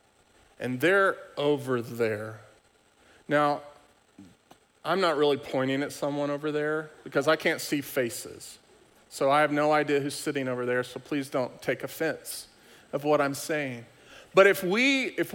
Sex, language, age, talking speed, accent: male, English, 40-59, 155 wpm, American